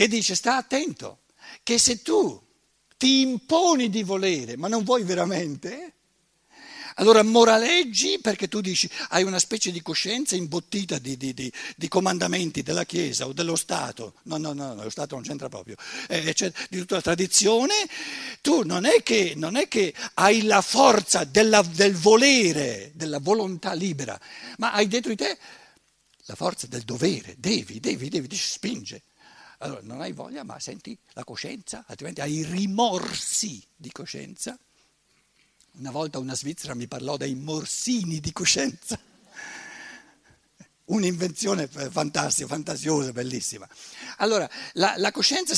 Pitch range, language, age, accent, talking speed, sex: 160-240 Hz, Italian, 60-79, native, 140 wpm, male